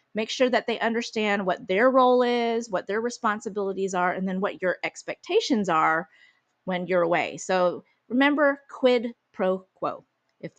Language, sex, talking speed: English, female, 160 wpm